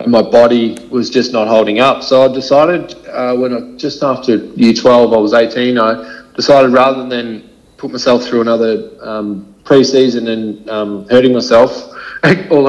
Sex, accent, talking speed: male, Australian, 170 wpm